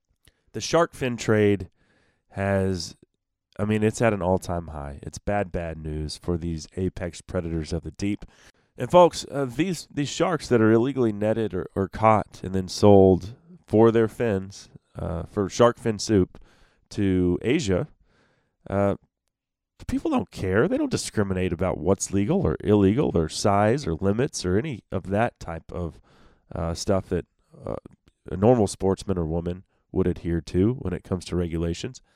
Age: 30-49